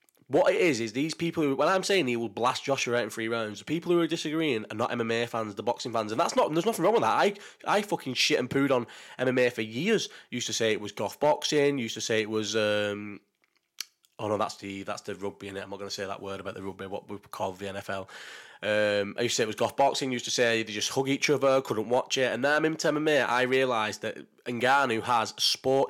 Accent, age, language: British, 20-39, English